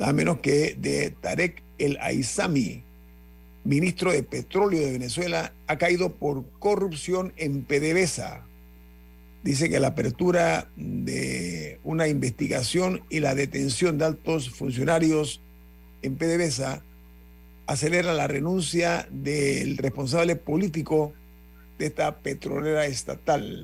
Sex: male